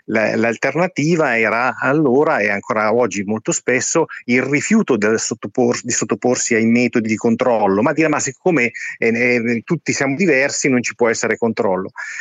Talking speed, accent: 155 wpm, native